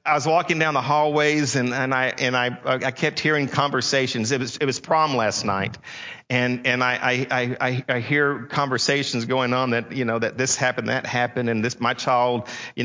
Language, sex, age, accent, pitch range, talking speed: English, male, 50-69, American, 125-165 Hz, 210 wpm